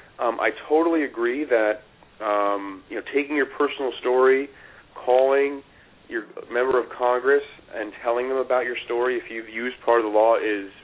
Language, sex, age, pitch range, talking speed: English, male, 40-59, 115-155 Hz, 170 wpm